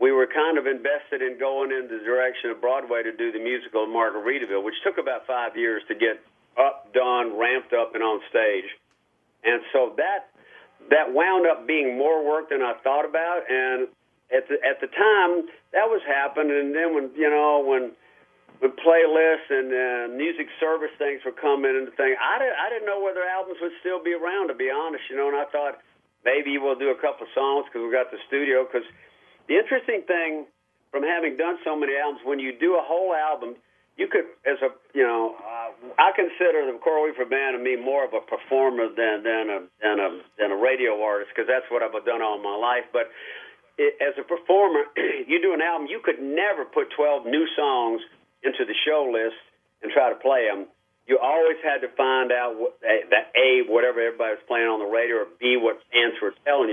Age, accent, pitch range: 50-69, American, 125-175 Hz